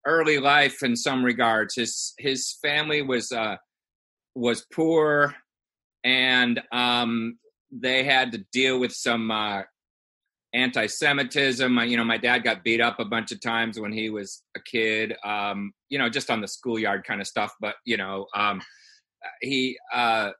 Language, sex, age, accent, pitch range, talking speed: English, male, 30-49, American, 120-150 Hz, 160 wpm